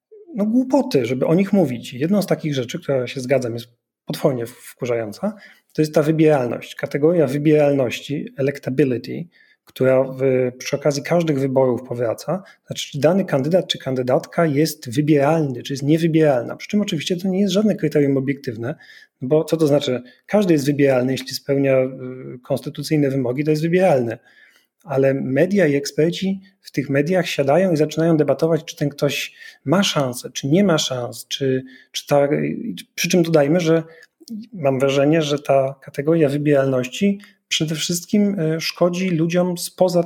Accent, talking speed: native, 150 wpm